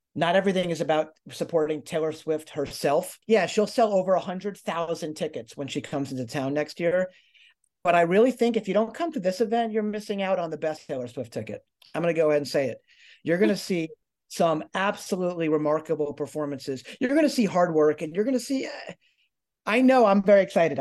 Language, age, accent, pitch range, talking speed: English, 40-59, American, 150-205 Hz, 210 wpm